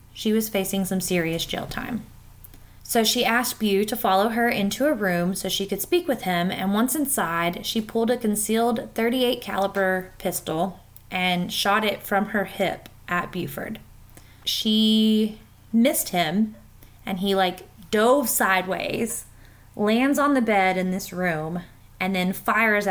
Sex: female